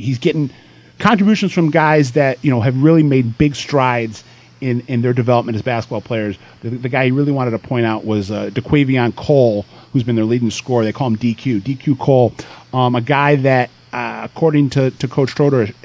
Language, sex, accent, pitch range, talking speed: English, male, American, 115-140 Hz, 205 wpm